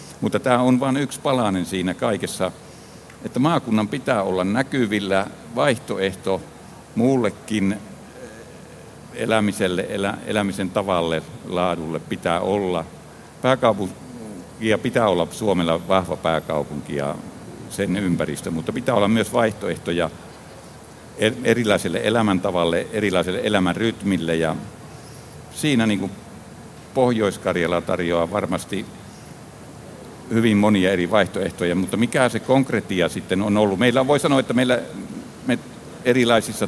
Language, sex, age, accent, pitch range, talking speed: Finnish, male, 60-79, native, 95-115 Hz, 105 wpm